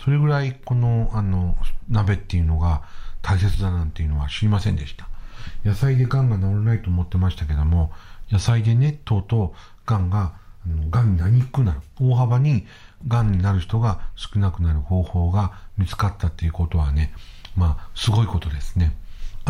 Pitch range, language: 85-115 Hz, Japanese